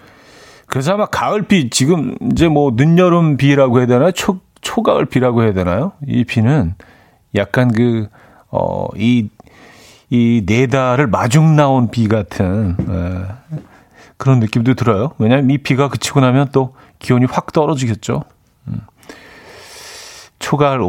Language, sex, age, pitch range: Korean, male, 40-59, 115-155 Hz